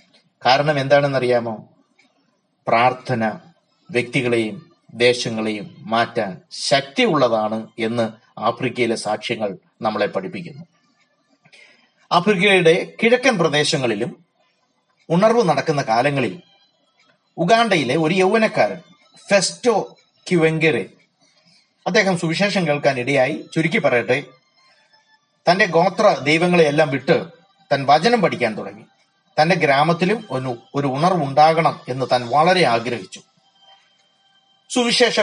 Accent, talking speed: native, 85 wpm